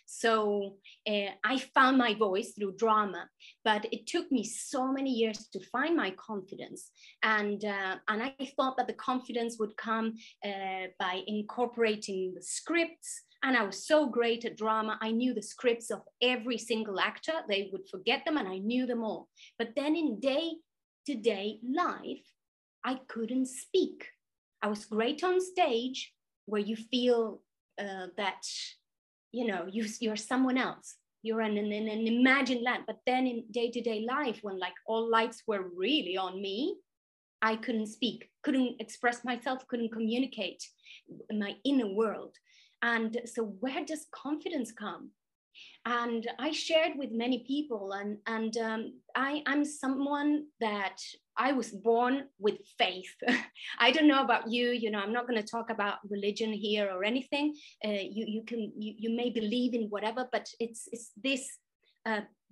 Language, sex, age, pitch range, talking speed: English, female, 30-49, 215-265 Hz, 160 wpm